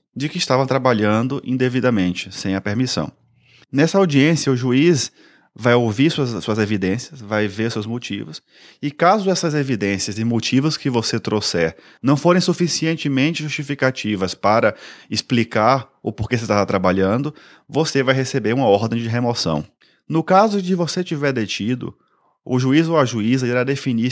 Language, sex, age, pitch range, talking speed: Portuguese, male, 30-49, 105-135 Hz, 150 wpm